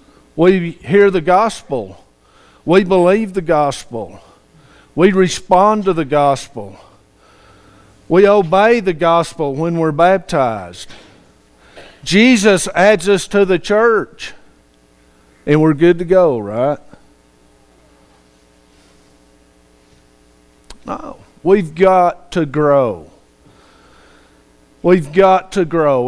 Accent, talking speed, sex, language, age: American, 95 wpm, male, English, 50-69